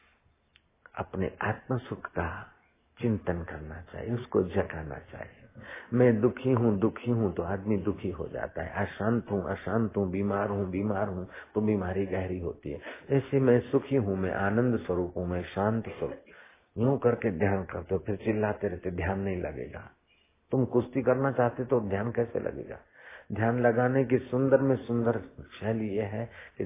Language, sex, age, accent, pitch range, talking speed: Hindi, male, 50-69, native, 90-115 Hz, 160 wpm